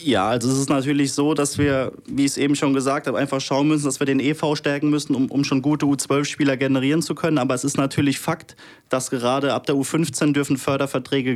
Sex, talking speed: male, 230 wpm